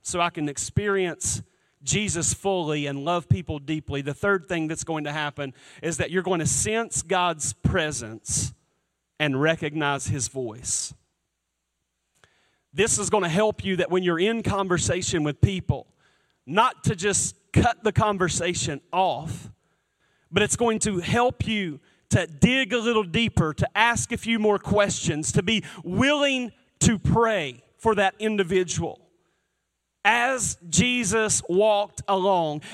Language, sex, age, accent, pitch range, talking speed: English, male, 40-59, American, 130-195 Hz, 145 wpm